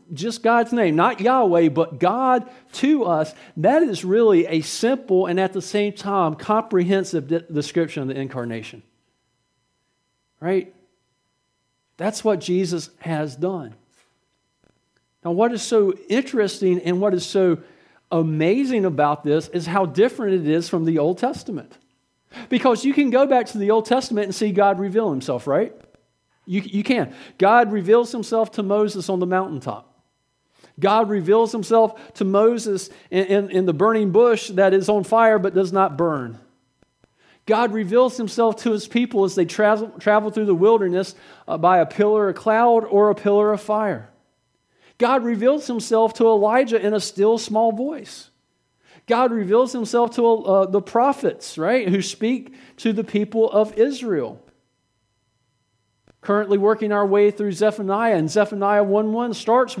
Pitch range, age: 170-225 Hz, 50-69